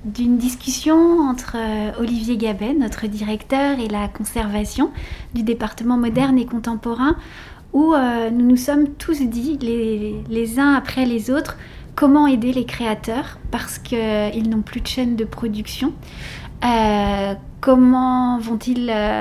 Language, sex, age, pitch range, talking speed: French, female, 30-49, 225-265 Hz, 135 wpm